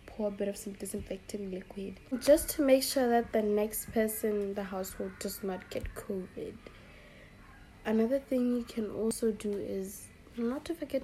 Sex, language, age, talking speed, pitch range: female, English, 20-39, 175 wpm, 195-235 Hz